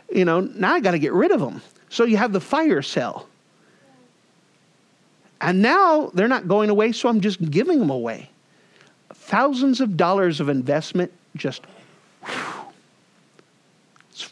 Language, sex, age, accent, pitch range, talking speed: English, male, 50-69, American, 180-265 Hz, 145 wpm